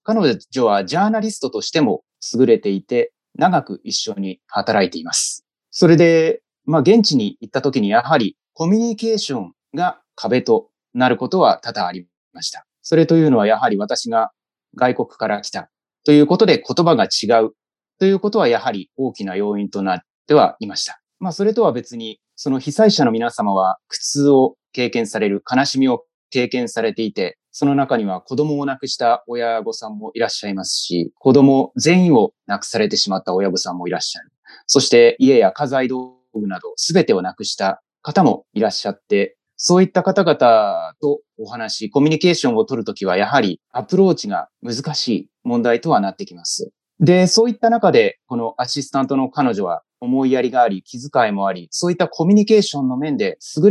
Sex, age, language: male, 30-49, Japanese